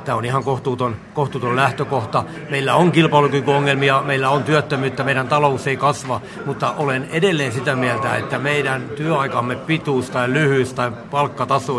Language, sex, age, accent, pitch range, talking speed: Finnish, male, 60-79, native, 125-145 Hz, 150 wpm